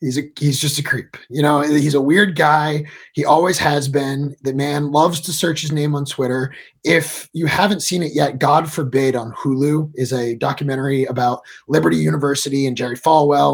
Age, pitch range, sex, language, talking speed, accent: 30-49, 130-160 Hz, male, English, 195 wpm, American